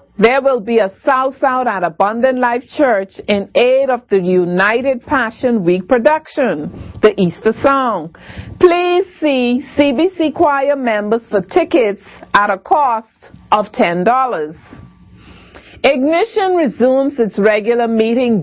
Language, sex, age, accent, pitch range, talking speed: English, female, 50-69, American, 215-275 Hz, 125 wpm